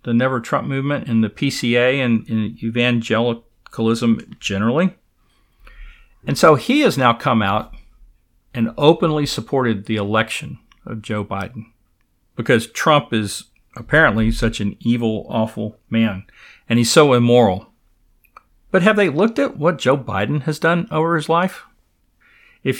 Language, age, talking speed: English, 50-69, 140 wpm